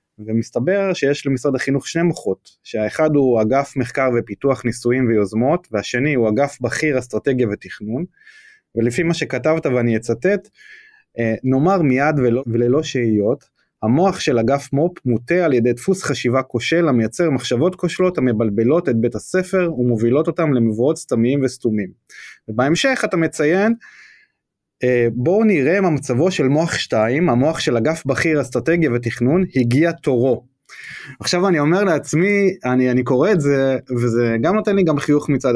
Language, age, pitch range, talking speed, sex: Hebrew, 20-39, 120-170 Hz, 145 wpm, male